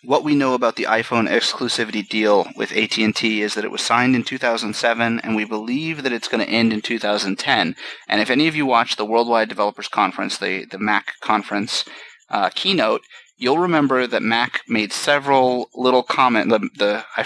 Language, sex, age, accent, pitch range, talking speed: English, male, 30-49, American, 110-125 Hz, 190 wpm